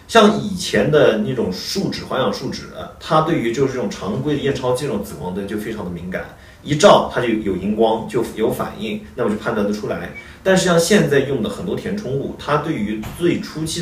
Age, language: 30-49, Chinese